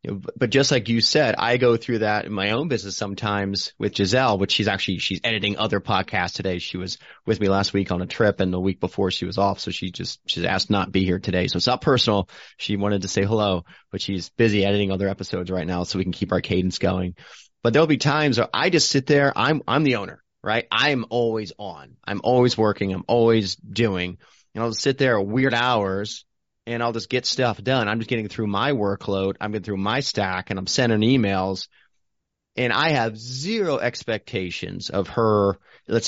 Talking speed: 225 wpm